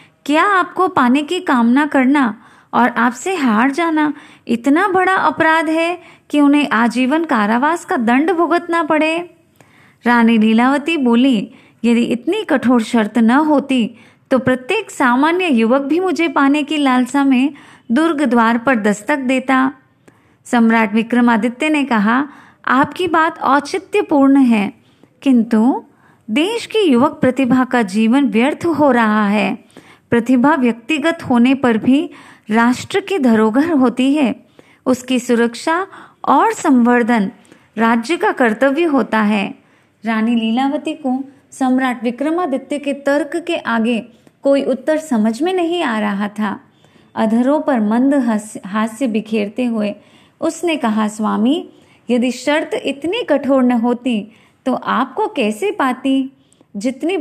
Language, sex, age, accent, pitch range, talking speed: Hindi, female, 20-39, native, 235-310 Hz, 130 wpm